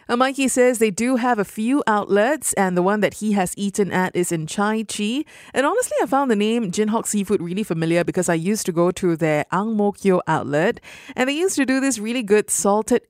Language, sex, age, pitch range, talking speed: English, female, 20-39, 180-235 Hz, 230 wpm